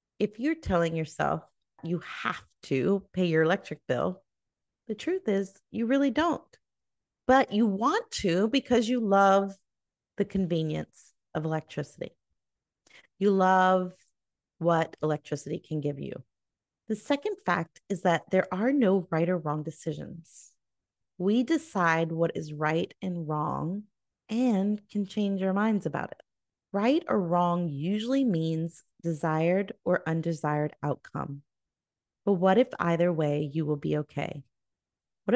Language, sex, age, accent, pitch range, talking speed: English, female, 30-49, American, 160-200 Hz, 135 wpm